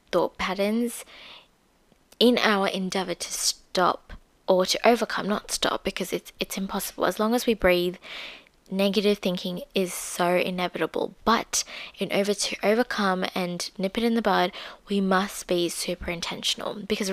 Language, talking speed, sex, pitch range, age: English, 150 wpm, female, 180-225 Hz, 20-39